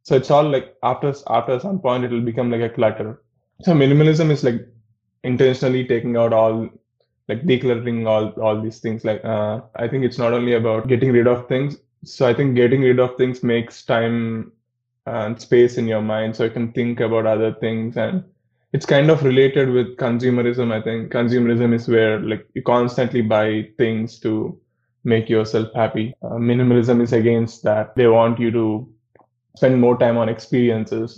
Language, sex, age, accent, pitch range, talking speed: Telugu, male, 20-39, native, 110-125 Hz, 185 wpm